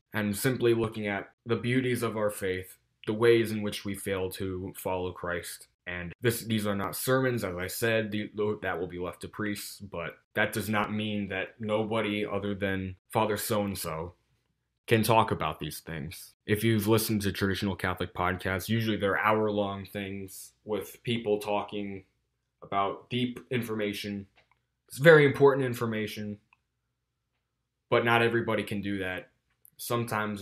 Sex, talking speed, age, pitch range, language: male, 150 wpm, 20-39, 100-115 Hz, English